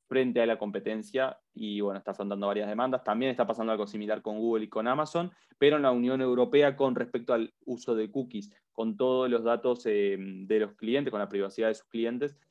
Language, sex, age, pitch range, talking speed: Spanish, male, 20-39, 110-135 Hz, 215 wpm